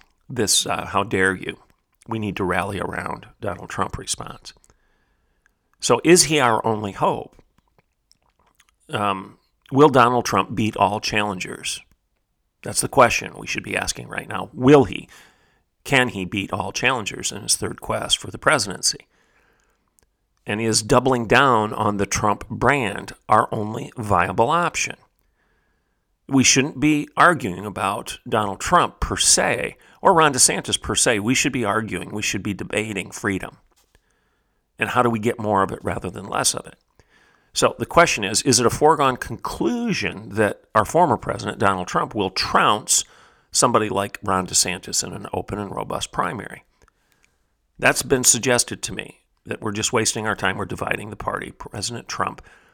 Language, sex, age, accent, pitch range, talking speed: English, male, 40-59, American, 100-125 Hz, 160 wpm